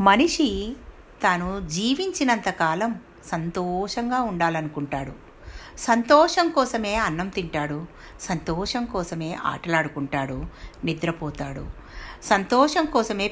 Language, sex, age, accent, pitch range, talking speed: Telugu, female, 60-79, native, 165-230 Hz, 70 wpm